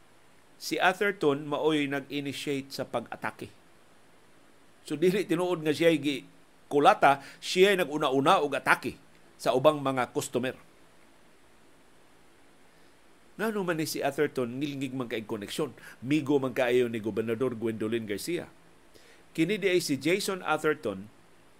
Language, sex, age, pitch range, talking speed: Filipino, male, 50-69, 135-180 Hz, 110 wpm